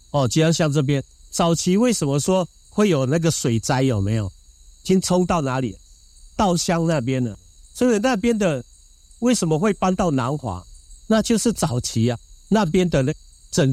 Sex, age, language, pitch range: male, 50-69, Chinese, 115-180 Hz